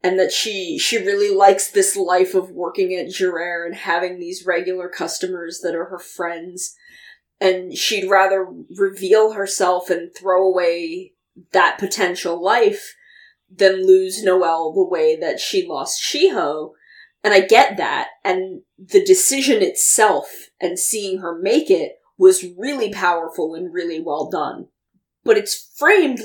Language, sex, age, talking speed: English, female, 20-39, 145 wpm